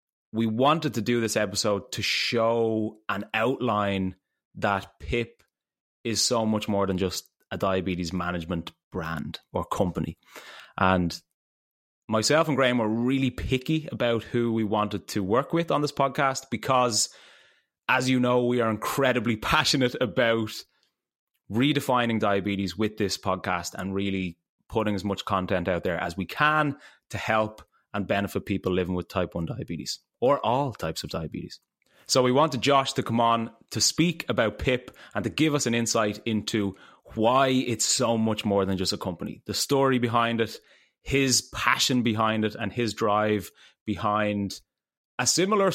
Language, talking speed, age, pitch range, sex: English, 160 wpm, 20-39, 100-125 Hz, male